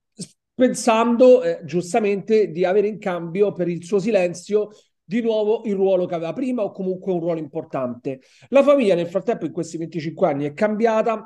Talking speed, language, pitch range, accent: 175 wpm, Italian, 165-210 Hz, native